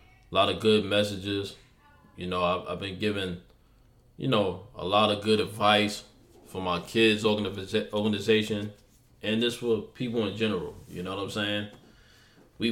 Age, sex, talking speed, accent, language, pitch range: 20-39, male, 165 wpm, American, English, 100-120 Hz